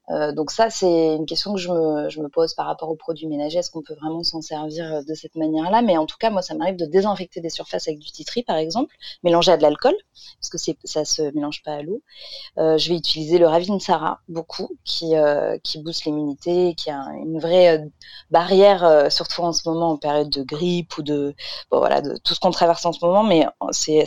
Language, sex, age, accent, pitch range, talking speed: French, female, 30-49, French, 155-185 Hz, 240 wpm